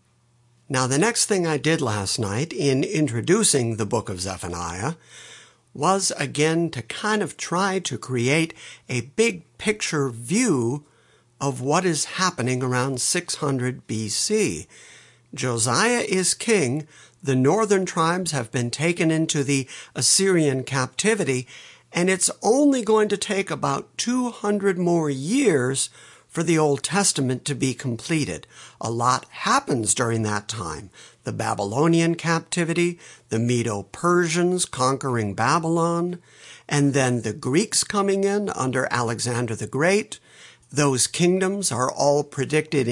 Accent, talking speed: American, 125 wpm